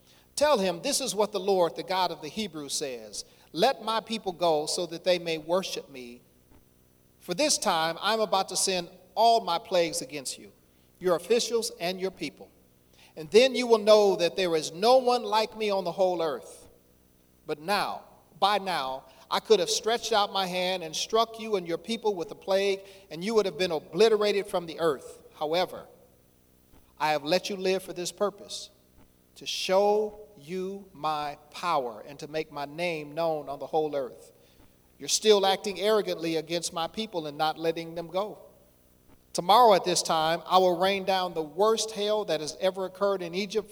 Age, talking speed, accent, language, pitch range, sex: 40-59, 190 wpm, American, English, 155-210 Hz, male